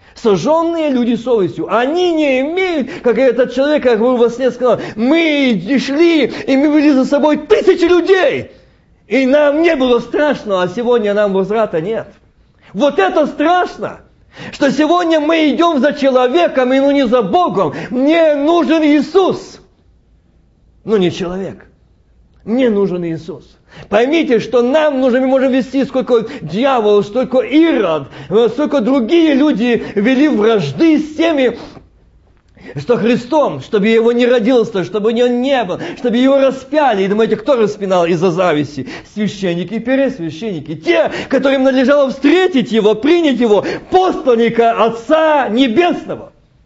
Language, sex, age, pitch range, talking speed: Russian, male, 40-59, 225-300 Hz, 135 wpm